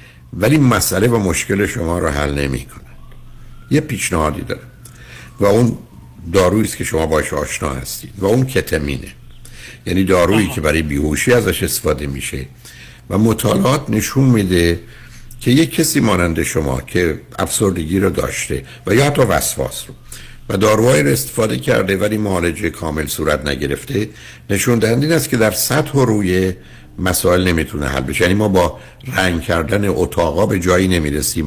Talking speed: 150 wpm